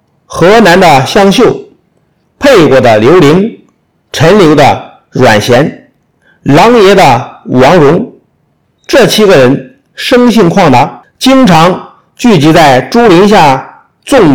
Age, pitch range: 50-69, 140-215 Hz